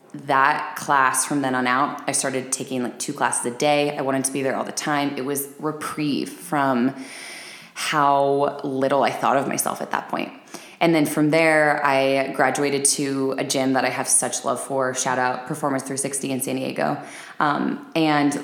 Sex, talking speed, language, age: female, 195 wpm, English, 20-39